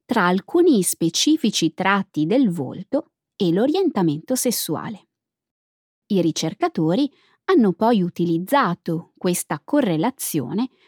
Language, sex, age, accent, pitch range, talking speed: Italian, female, 20-39, native, 170-270 Hz, 90 wpm